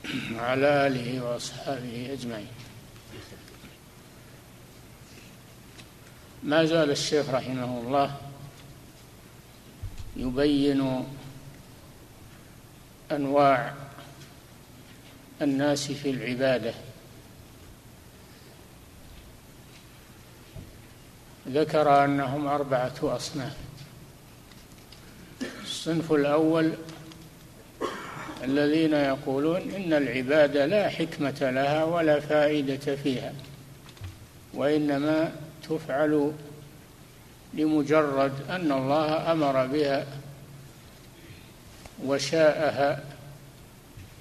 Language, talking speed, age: Arabic, 50 wpm, 60-79